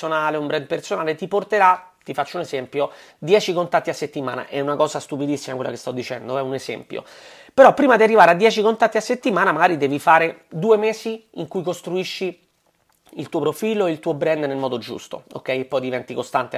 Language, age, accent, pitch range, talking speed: Italian, 30-49, native, 145-210 Hz, 200 wpm